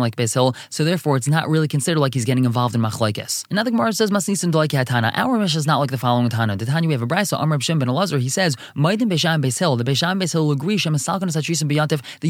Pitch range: 130-165 Hz